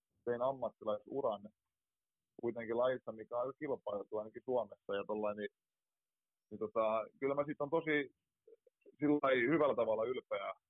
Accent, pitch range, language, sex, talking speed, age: native, 105-135 Hz, Finnish, male, 135 wpm, 30-49